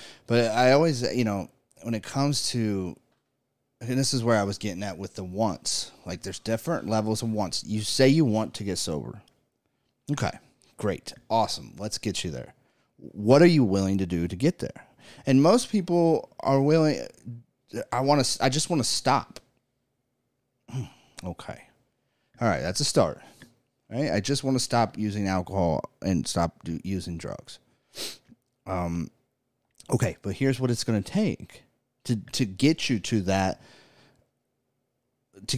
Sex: male